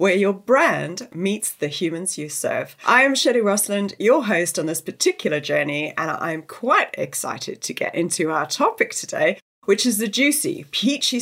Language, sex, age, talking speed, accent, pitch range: English, female, 30-49, 175 wpm, British, 155-235 Hz